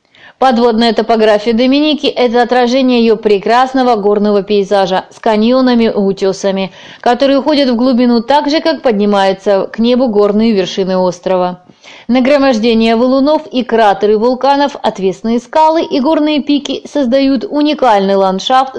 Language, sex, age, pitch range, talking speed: Russian, female, 20-39, 205-270 Hz, 125 wpm